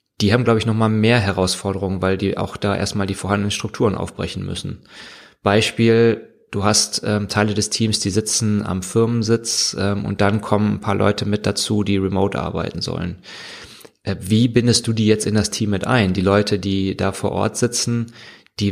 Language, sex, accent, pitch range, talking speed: German, male, German, 100-110 Hz, 190 wpm